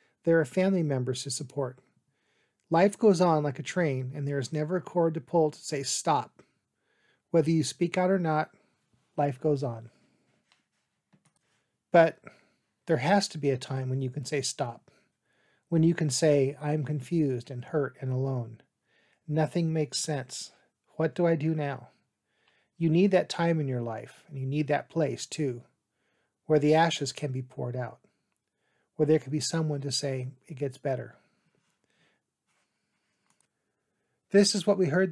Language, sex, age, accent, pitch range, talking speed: English, male, 40-59, American, 135-165 Hz, 165 wpm